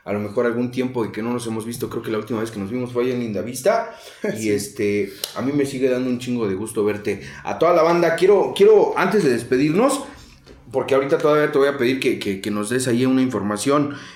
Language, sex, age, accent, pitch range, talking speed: Spanish, male, 30-49, Mexican, 115-155 Hz, 250 wpm